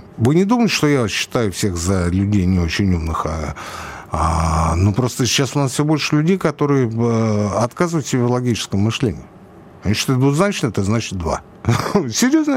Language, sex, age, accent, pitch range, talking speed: Russian, male, 60-79, native, 95-150 Hz, 160 wpm